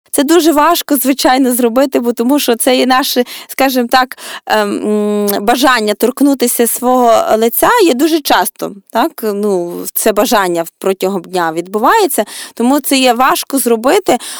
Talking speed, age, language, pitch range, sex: 135 wpm, 20-39, Ukrainian, 205-255 Hz, female